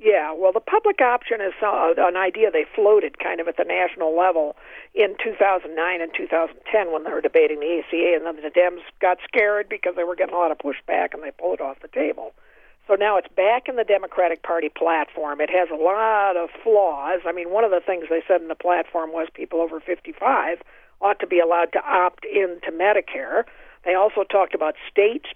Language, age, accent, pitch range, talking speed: English, 50-69, American, 165-205 Hz, 215 wpm